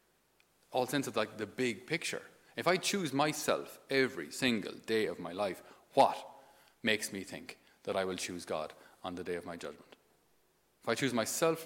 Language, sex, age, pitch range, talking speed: English, male, 40-59, 110-155 Hz, 185 wpm